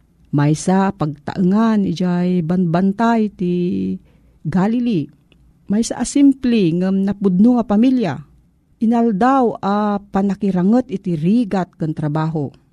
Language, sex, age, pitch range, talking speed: Filipino, female, 40-59, 160-215 Hz, 95 wpm